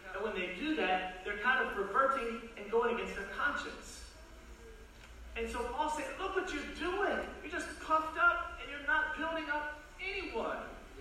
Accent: American